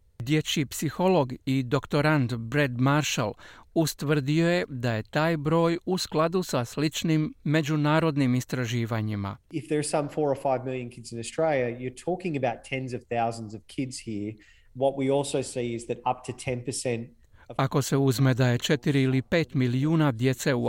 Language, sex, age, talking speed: Croatian, male, 40-59, 85 wpm